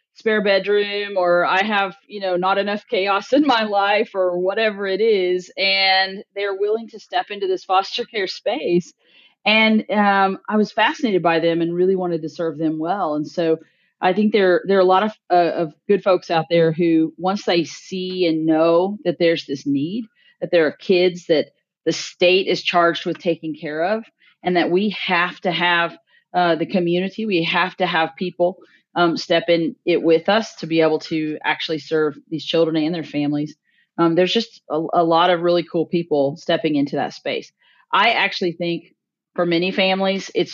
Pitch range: 165-195 Hz